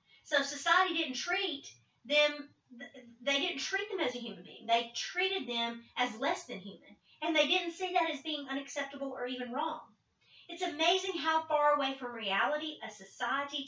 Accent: American